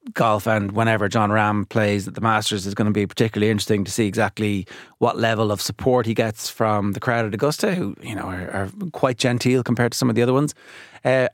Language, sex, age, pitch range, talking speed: English, male, 30-49, 105-120 Hz, 235 wpm